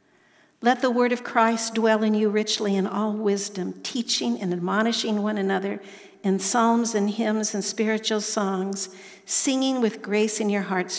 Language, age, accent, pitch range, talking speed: English, 60-79, American, 190-225 Hz, 165 wpm